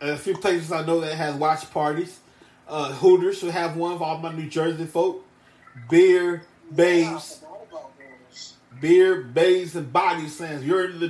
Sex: male